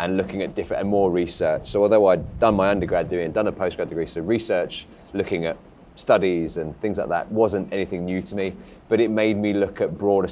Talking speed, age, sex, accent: 235 wpm, 30-49, male, British